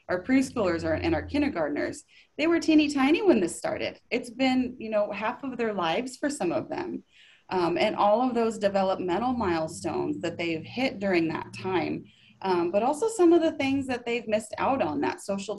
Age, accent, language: 20-39, American, English